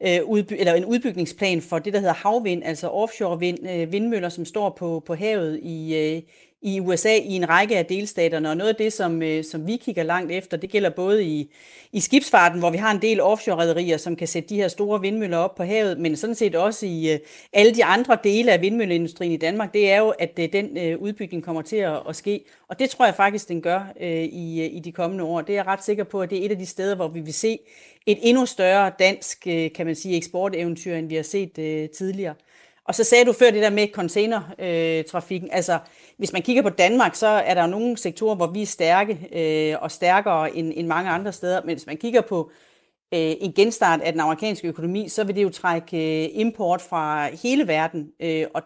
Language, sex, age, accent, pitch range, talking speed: Danish, female, 40-59, native, 165-205 Hz, 210 wpm